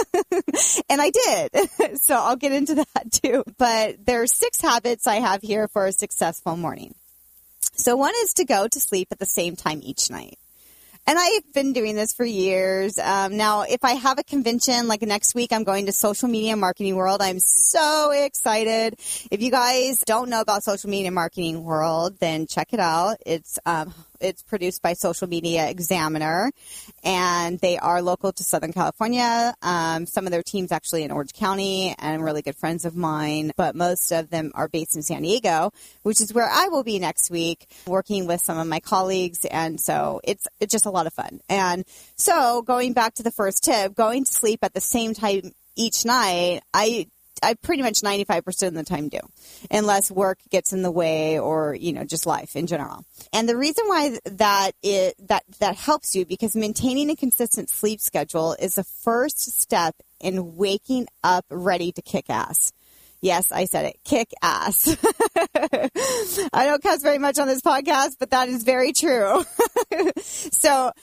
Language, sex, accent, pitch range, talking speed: English, female, American, 175-250 Hz, 190 wpm